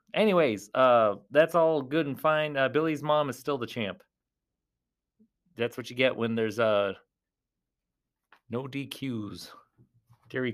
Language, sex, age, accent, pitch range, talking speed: English, male, 30-49, American, 125-200 Hz, 135 wpm